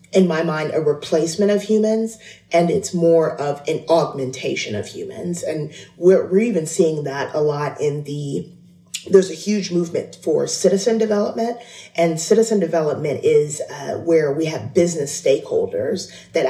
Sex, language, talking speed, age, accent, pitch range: female, English, 155 wpm, 30-49, American, 150-215 Hz